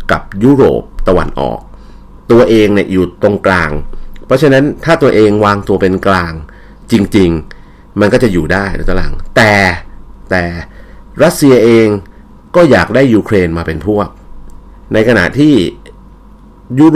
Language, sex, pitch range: Thai, male, 85-110 Hz